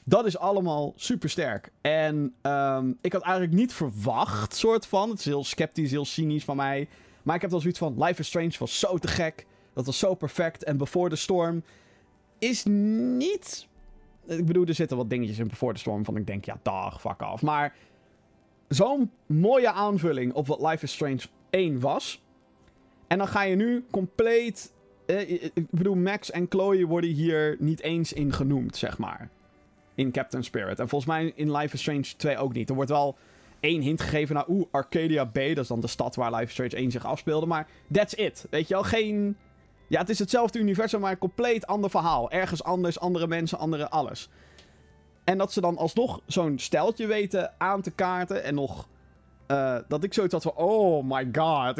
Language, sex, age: Dutch, male, 20-39